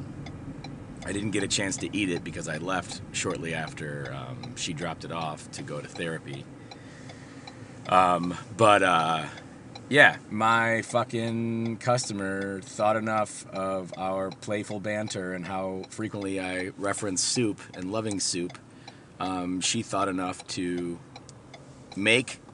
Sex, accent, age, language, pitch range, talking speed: male, American, 30-49, English, 90-125 Hz, 135 wpm